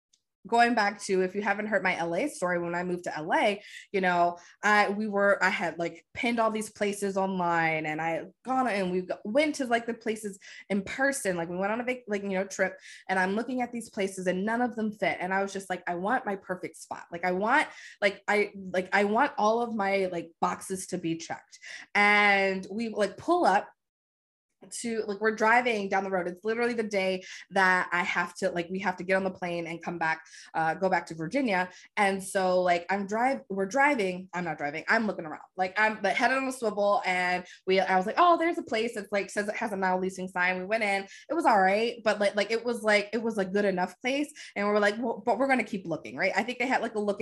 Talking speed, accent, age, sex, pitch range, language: 250 wpm, American, 20-39, female, 185-225 Hz, English